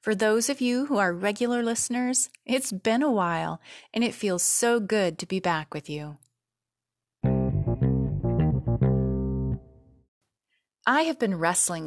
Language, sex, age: English, female, 30-49